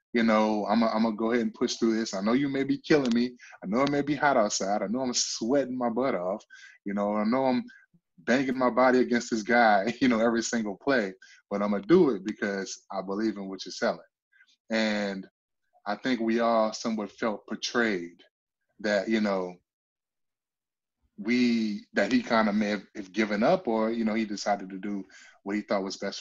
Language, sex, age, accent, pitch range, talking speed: English, male, 20-39, American, 105-125 Hz, 210 wpm